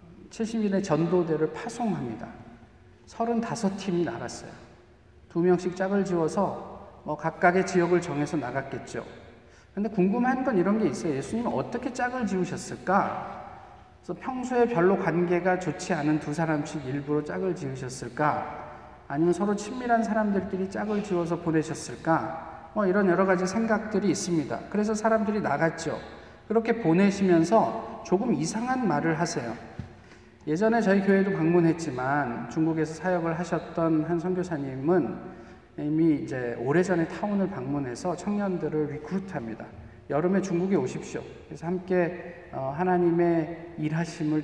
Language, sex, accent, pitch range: Korean, male, native, 155-195 Hz